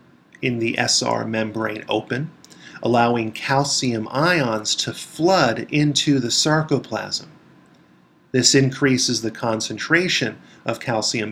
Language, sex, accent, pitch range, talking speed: English, male, American, 110-140 Hz, 100 wpm